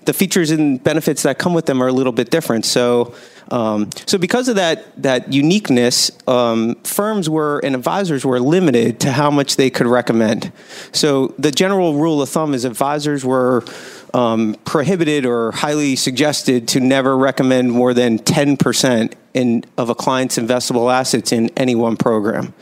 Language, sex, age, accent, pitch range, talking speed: English, male, 40-59, American, 125-155 Hz, 170 wpm